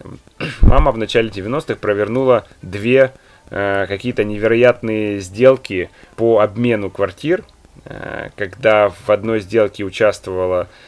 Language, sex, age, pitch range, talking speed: Ukrainian, male, 20-39, 95-120 Hz, 105 wpm